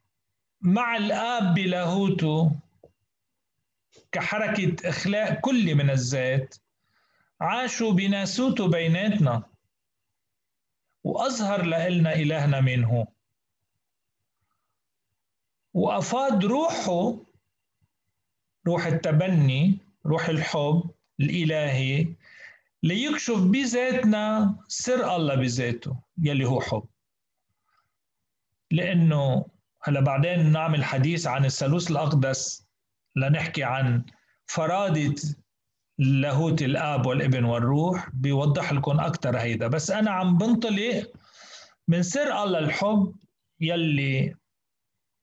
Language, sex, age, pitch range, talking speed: Arabic, male, 40-59, 120-185 Hz, 75 wpm